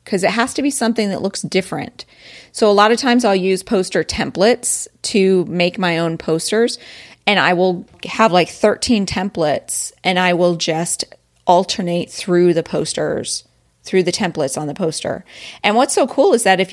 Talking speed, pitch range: 185 wpm, 165-200 Hz